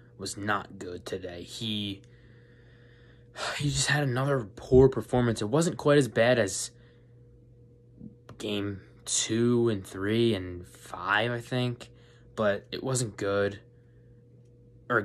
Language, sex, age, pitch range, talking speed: English, male, 20-39, 95-120 Hz, 120 wpm